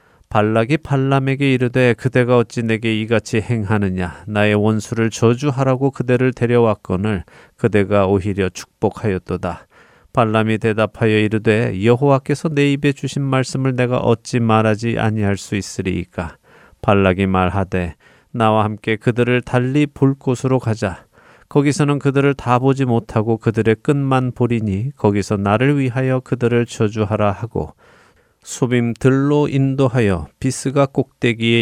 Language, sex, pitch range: Korean, male, 105-130 Hz